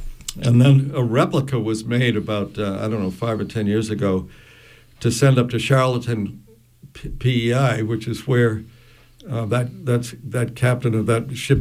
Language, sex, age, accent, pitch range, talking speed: English, male, 60-79, American, 110-135 Hz, 170 wpm